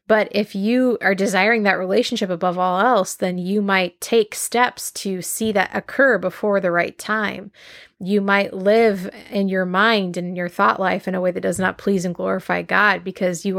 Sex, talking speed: female, 200 wpm